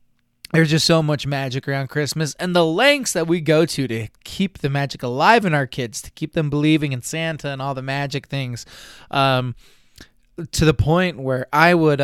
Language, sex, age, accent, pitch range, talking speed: English, male, 20-39, American, 130-165 Hz, 200 wpm